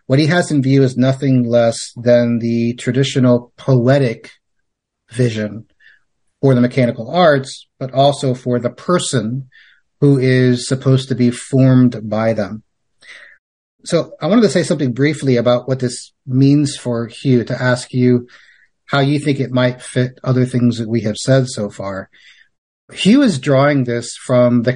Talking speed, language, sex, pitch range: 160 wpm, English, male, 120-140 Hz